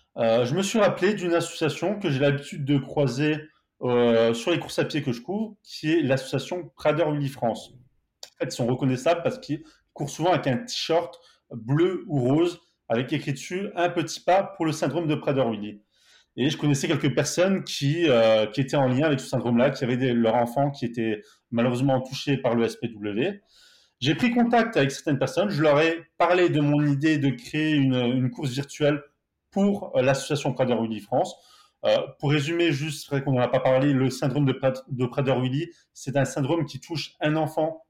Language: French